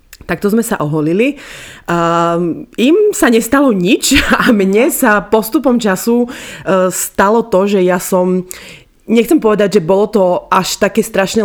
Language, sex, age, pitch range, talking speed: Slovak, female, 20-39, 170-210 Hz, 145 wpm